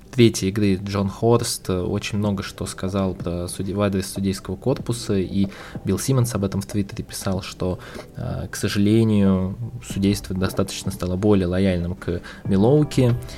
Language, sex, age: Russian, male, 20-39